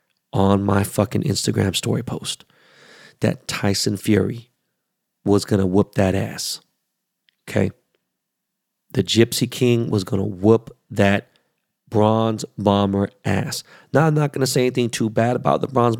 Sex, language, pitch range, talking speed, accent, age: male, English, 100-120 Hz, 135 wpm, American, 30-49